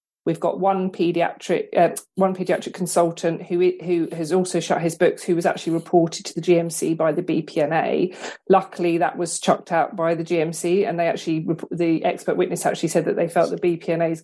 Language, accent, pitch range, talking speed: English, British, 170-190 Hz, 195 wpm